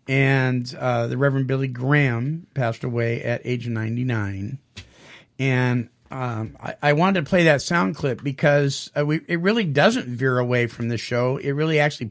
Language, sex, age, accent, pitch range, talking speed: English, male, 50-69, American, 125-160 Hz, 175 wpm